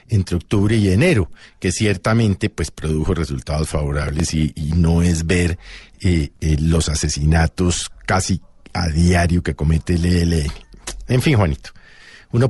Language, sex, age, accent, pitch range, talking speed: Spanish, male, 50-69, Colombian, 95-150 Hz, 140 wpm